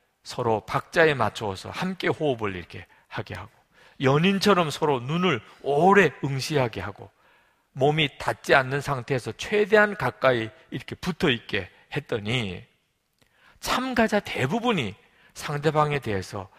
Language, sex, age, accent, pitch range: Korean, male, 40-59, native, 110-180 Hz